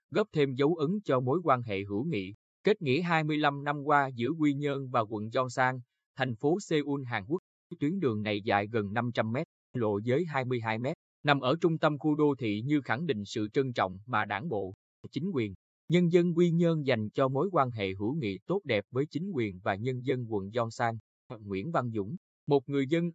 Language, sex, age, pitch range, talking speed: Vietnamese, male, 20-39, 110-145 Hz, 215 wpm